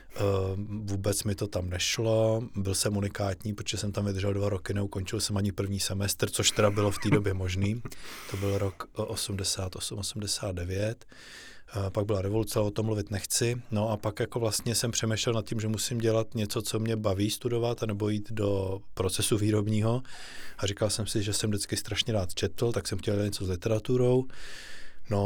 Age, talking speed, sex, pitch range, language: 20-39, 180 wpm, male, 100-110 Hz, Czech